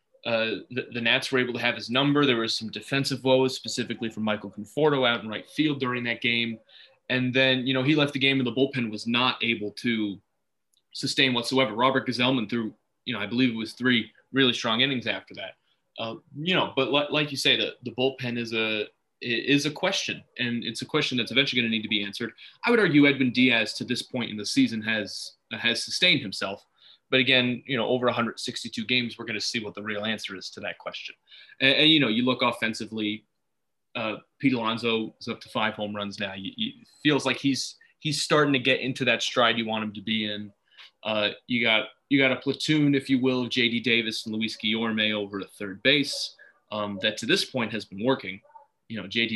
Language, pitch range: English, 110-135 Hz